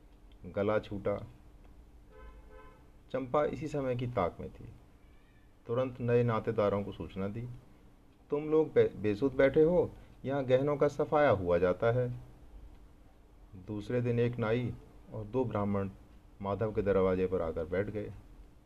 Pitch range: 95-110 Hz